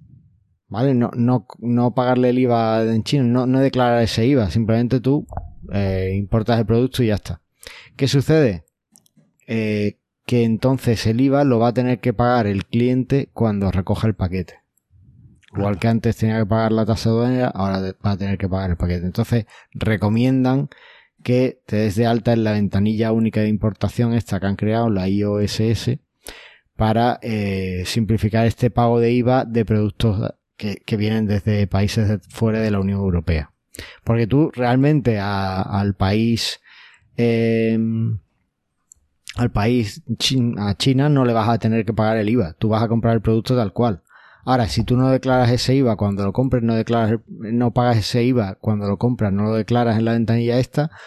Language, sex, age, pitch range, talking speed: Spanish, male, 20-39, 100-120 Hz, 180 wpm